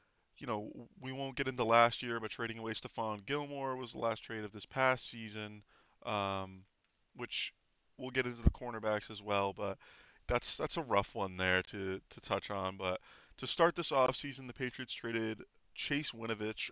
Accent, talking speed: American, 185 wpm